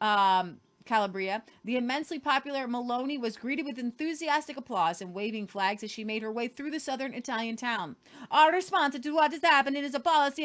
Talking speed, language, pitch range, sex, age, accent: 190 wpm, English, 210-275 Hz, female, 30-49, American